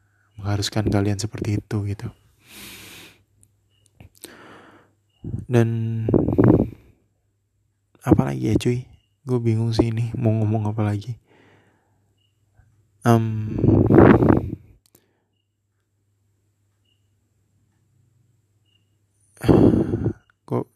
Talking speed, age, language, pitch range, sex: 50 wpm, 20-39, Indonesian, 100-115 Hz, male